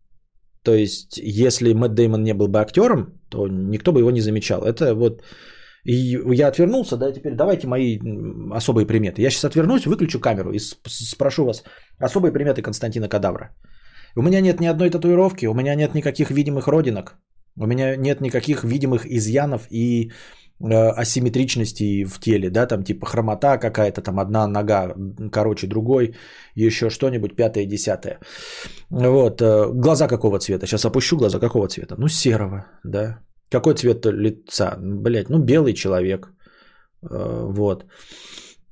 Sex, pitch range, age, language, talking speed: male, 105-130 Hz, 20-39, Bulgarian, 145 wpm